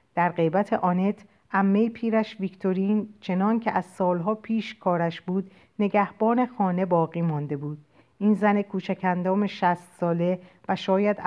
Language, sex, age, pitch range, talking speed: Persian, female, 50-69, 160-200 Hz, 135 wpm